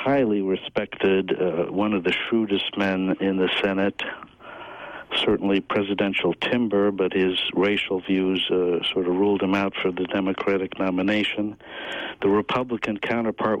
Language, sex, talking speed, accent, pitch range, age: English, male, 135 wpm, American, 95-105 Hz, 60-79